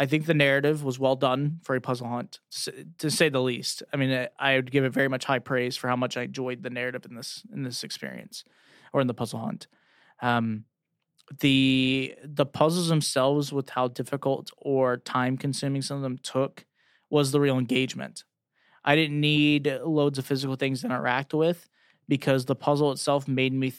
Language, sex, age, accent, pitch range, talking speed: English, male, 20-39, American, 130-145 Hz, 190 wpm